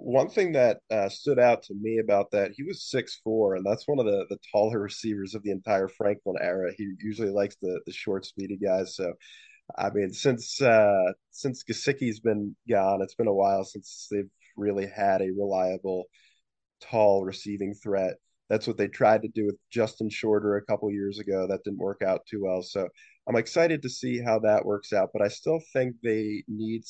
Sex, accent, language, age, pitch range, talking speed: male, American, English, 20-39, 100-115 Hz, 205 wpm